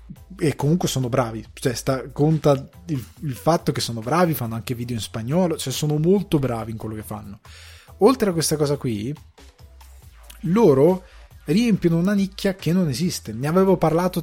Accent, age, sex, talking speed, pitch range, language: native, 20-39, male, 175 wpm, 120-165 Hz, Italian